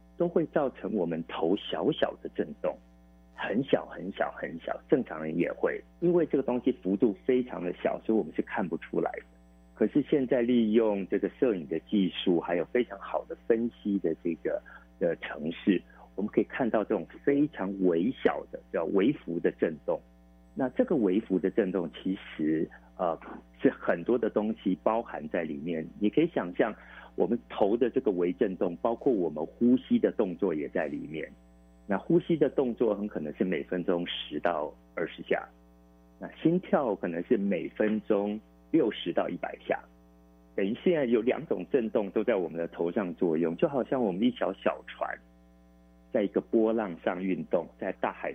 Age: 50-69